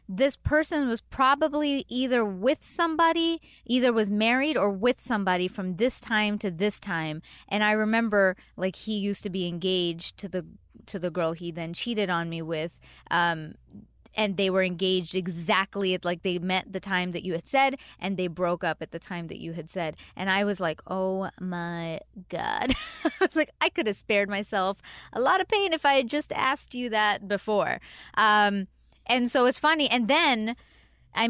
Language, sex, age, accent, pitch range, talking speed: English, female, 20-39, American, 180-230 Hz, 190 wpm